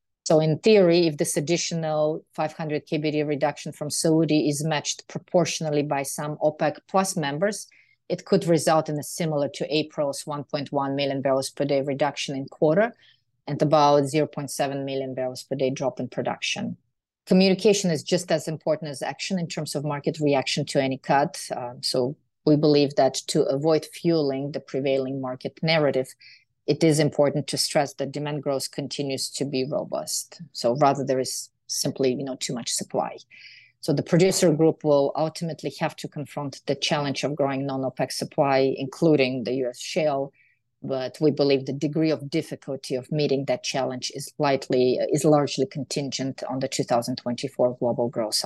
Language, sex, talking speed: English, female, 165 wpm